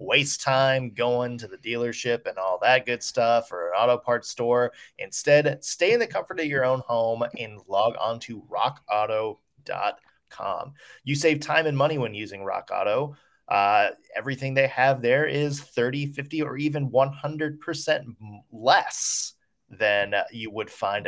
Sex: male